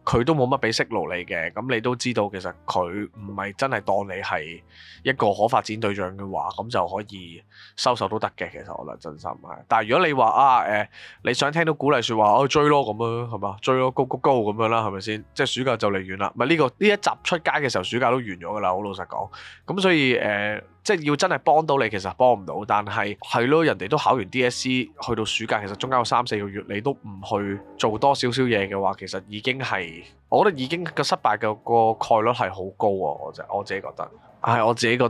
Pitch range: 100-125 Hz